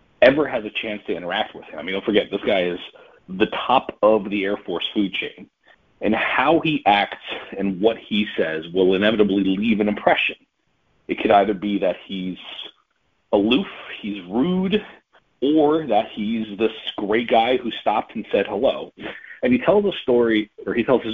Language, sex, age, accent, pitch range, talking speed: English, male, 40-59, American, 100-125 Hz, 180 wpm